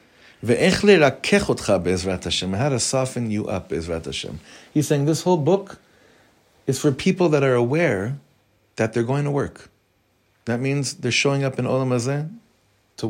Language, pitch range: English, 105-155 Hz